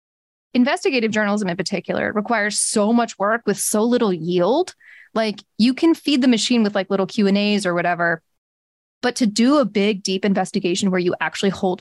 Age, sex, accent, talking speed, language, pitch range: 20-39, female, American, 190 wpm, English, 190-240 Hz